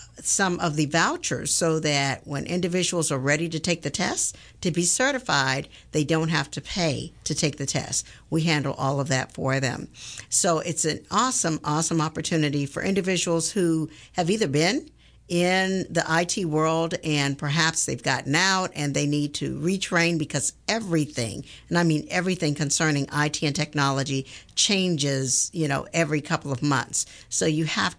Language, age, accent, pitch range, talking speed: English, 50-69, American, 150-185 Hz, 170 wpm